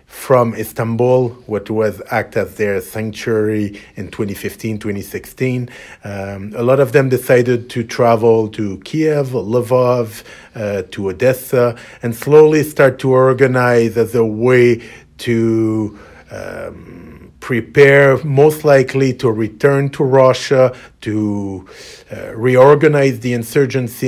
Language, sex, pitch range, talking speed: English, male, 110-130 Hz, 115 wpm